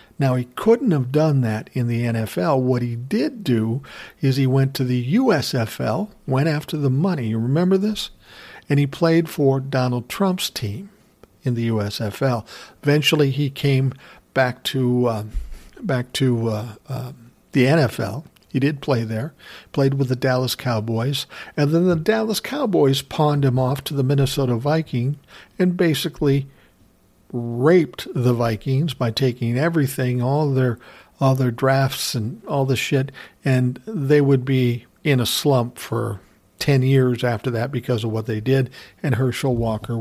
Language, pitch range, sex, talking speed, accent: English, 120-145 Hz, male, 155 wpm, American